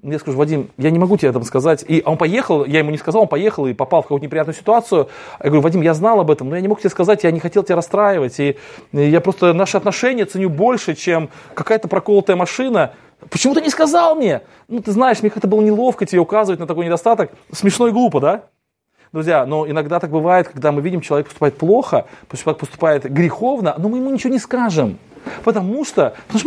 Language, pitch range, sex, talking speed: Russian, 155-215 Hz, male, 225 wpm